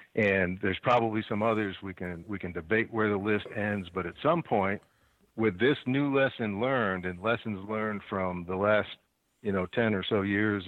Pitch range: 95-115 Hz